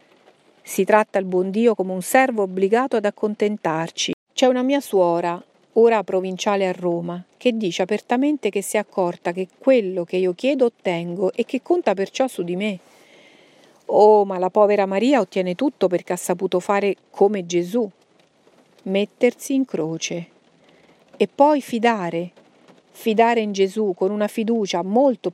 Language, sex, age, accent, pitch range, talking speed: Italian, female, 40-59, native, 185-225 Hz, 155 wpm